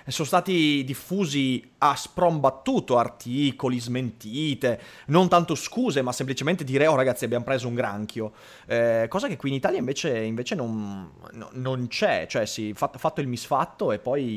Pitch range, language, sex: 115-150 Hz, Italian, male